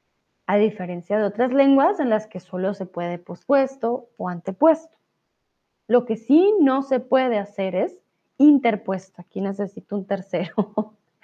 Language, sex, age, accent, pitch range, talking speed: Spanish, female, 20-39, Mexican, 200-270 Hz, 145 wpm